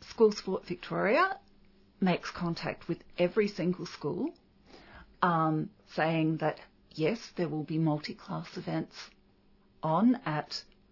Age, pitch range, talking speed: 40-59, 165-205 Hz, 110 wpm